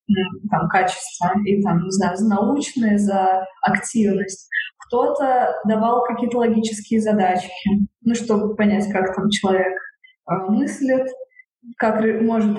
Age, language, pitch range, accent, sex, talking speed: 20-39, Russian, 200-240 Hz, native, female, 110 wpm